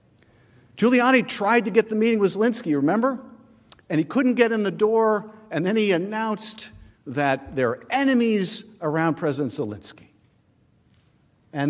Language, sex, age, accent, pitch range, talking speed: English, male, 50-69, American, 145-215 Hz, 145 wpm